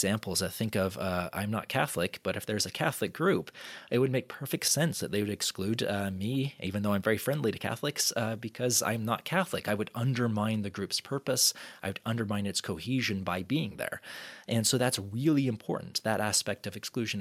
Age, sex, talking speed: 30-49, male, 200 wpm